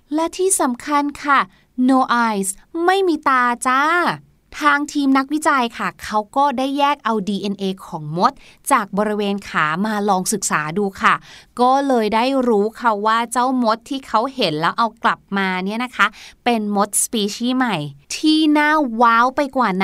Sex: female